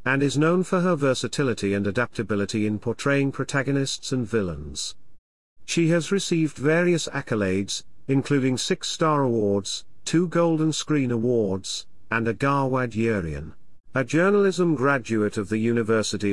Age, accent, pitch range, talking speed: 40-59, British, 105-145 Hz, 130 wpm